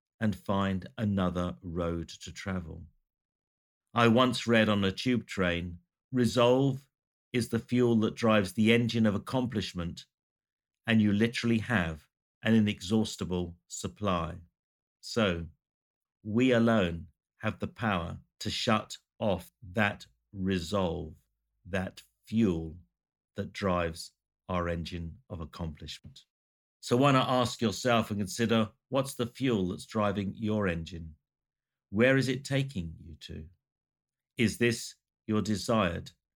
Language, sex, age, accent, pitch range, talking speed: English, male, 50-69, British, 90-115 Hz, 120 wpm